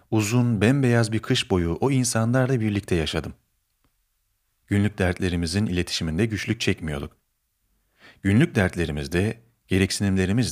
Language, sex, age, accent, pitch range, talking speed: Turkish, male, 40-59, native, 85-115 Hz, 105 wpm